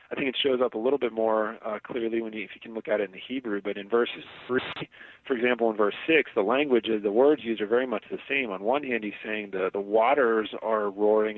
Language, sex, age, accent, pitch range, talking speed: English, male, 40-59, American, 100-125 Hz, 270 wpm